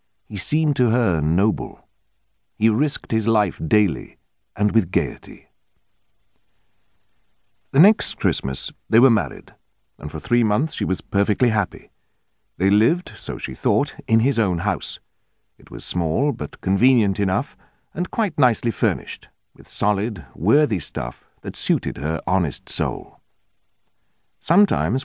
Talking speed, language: 135 wpm, English